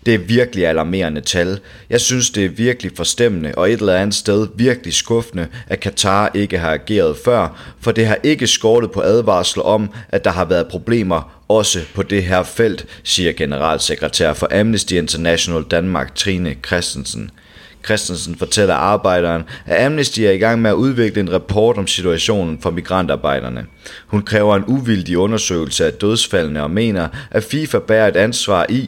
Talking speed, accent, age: 170 wpm, native, 30-49